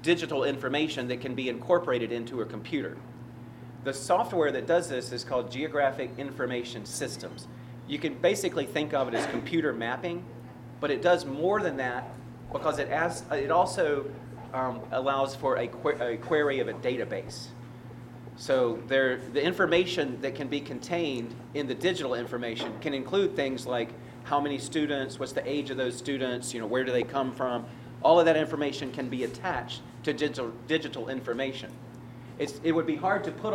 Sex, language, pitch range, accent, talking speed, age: male, English, 120-155 Hz, American, 170 wpm, 40-59